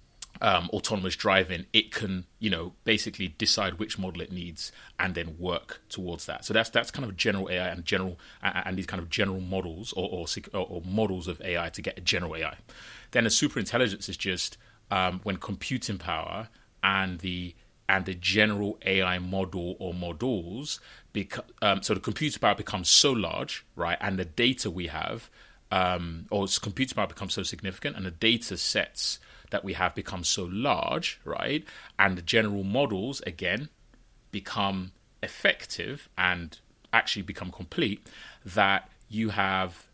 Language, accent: English, British